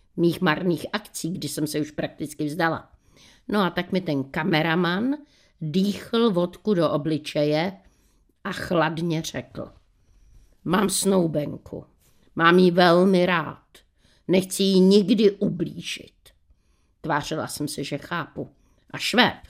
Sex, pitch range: female, 150-200 Hz